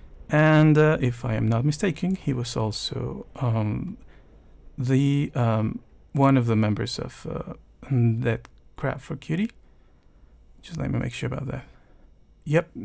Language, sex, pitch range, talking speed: English, male, 110-145 Hz, 145 wpm